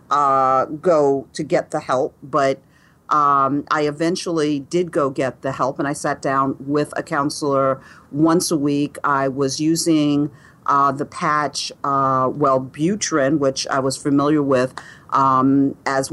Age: 50-69